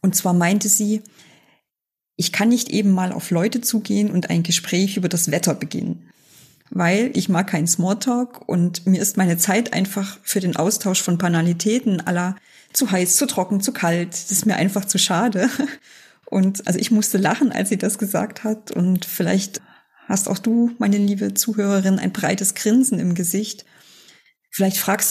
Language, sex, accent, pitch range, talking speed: German, female, German, 180-225 Hz, 175 wpm